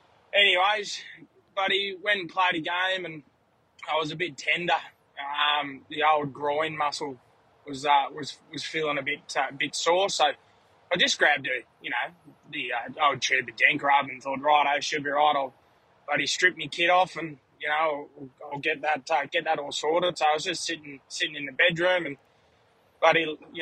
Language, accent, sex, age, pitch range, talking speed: English, Australian, male, 20-39, 145-170 Hz, 200 wpm